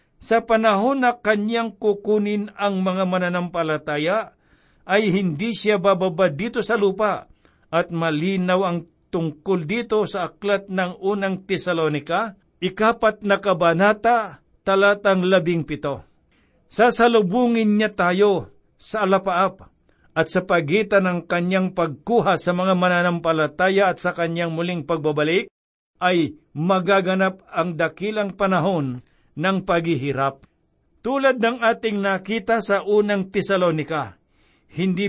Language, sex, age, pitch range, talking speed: Filipino, male, 60-79, 170-205 Hz, 110 wpm